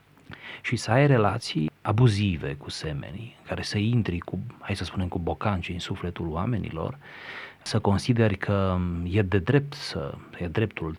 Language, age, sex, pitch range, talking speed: Romanian, 30-49, male, 90-110 Hz, 155 wpm